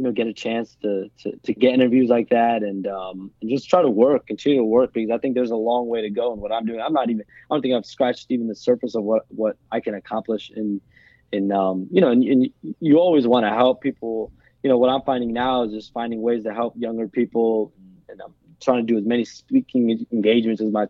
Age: 20-39